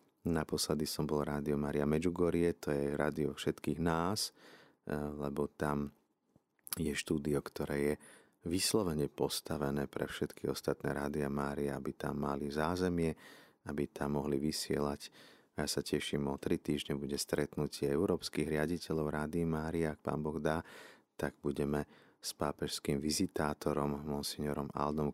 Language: Slovak